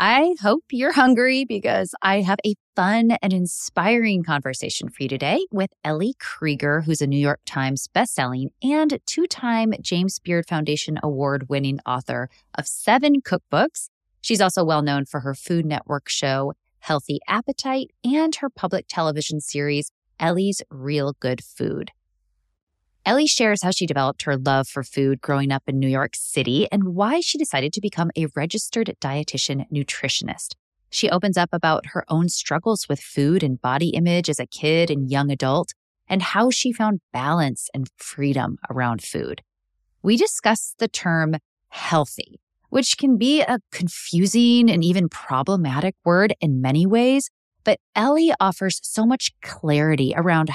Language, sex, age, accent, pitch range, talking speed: English, female, 20-39, American, 140-215 Hz, 155 wpm